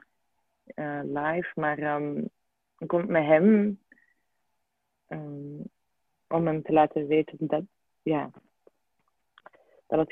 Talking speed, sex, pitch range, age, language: 105 wpm, female, 150-180 Hz, 20-39, Dutch